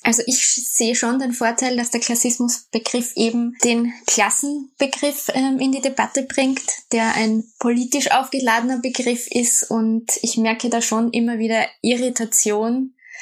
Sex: female